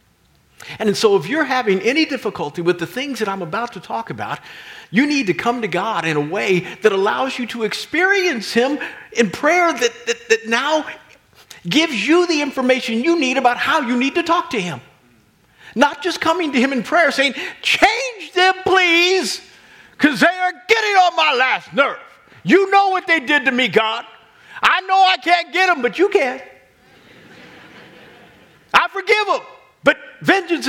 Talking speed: 180 wpm